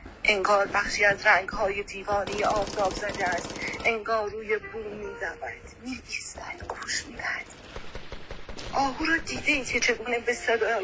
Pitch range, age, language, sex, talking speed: 210-250 Hz, 30-49, Persian, female, 125 wpm